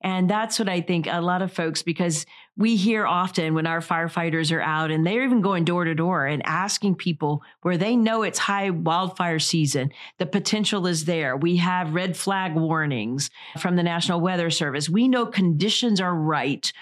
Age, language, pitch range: 40-59, English, 165-215 Hz